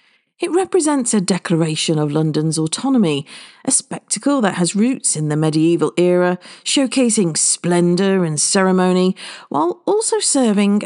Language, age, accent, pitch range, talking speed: English, 50-69, British, 160-225 Hz, 125 wpm